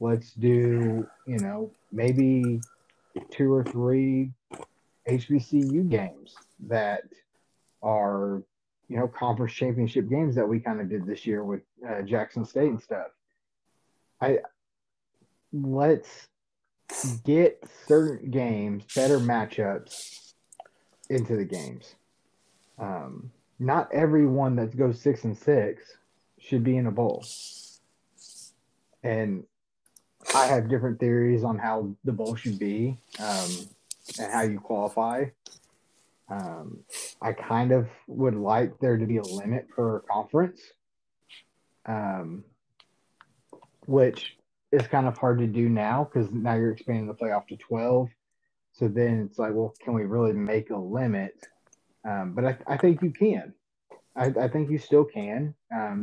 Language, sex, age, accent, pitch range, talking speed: English, male, 30-49, American, 110-135 Hz, 135 wpm